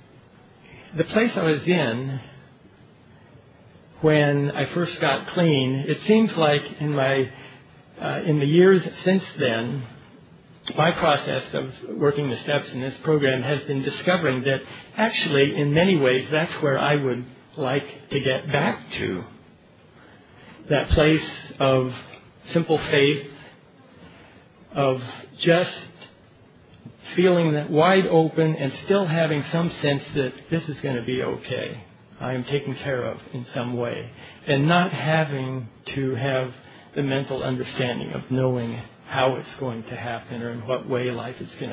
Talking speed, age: 140 wpm, 50-69